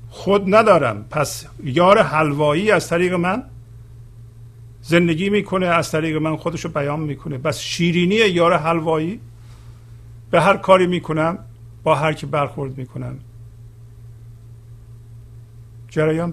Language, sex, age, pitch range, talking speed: Persian, male, 50-69, 115-160 Hz, 110 wpm